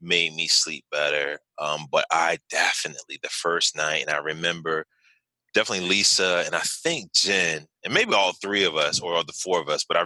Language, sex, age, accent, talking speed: English, male, 30-49, American, 205 wpm